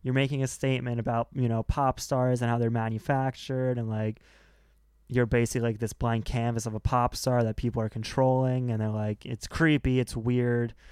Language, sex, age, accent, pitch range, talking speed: English, male, 20-39, American, 115-135 Hz, 200 wpm